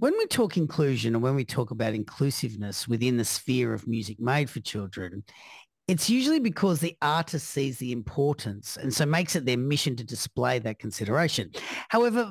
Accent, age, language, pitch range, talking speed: Australian, 40-59, English, 120-165 Hz, 180 wpm